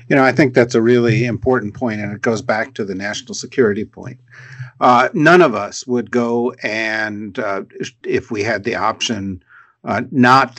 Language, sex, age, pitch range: English, male, 50-69, 110-130 Hz